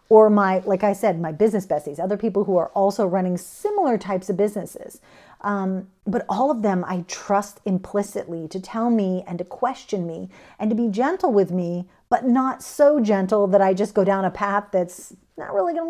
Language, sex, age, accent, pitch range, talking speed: English, female, 40-59, American, 185-235 Hz, 205 wpm